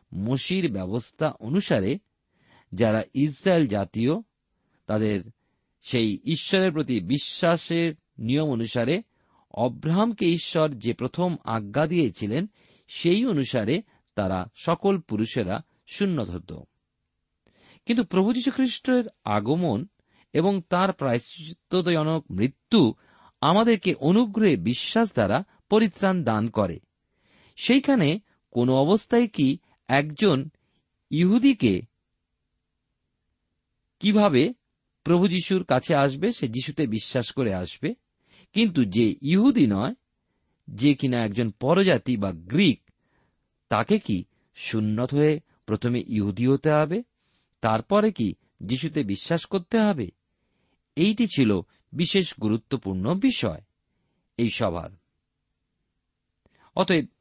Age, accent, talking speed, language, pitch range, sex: 50-69, native, 90 wpm, Bengali, 115-190 Hz, male